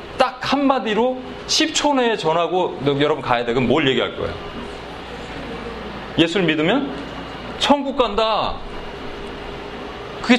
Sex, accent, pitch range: male, native, 180-250 Hz